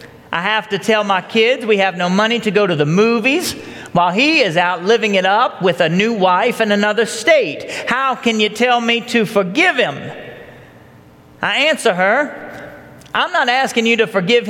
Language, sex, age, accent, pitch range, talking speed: English, male, 40-59, American, 205-275 Hz, 190 wpm